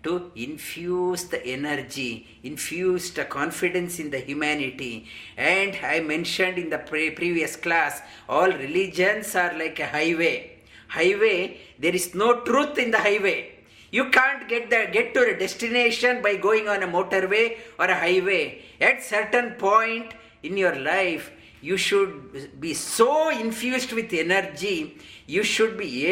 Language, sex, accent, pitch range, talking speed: English, male, Indian, 160-220 Hz, 145 wpm